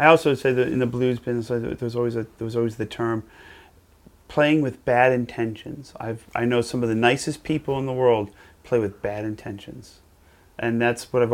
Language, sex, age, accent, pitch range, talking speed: English, male, 30-49, American, 110-125 Hz, 200 wpm